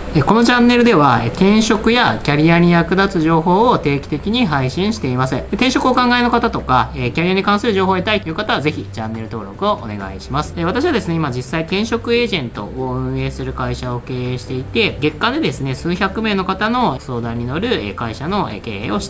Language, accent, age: Japanese, native, 20-39